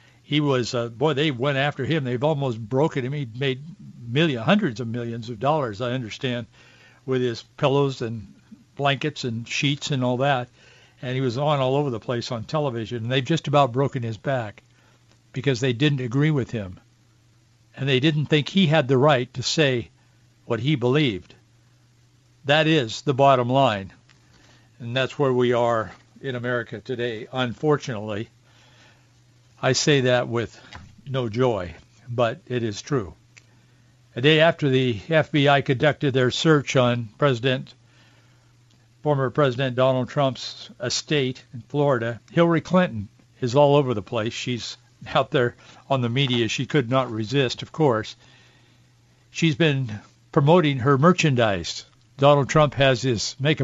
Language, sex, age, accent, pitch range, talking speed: English, male, 60-79, American, 120-145 Hz, 155 wpm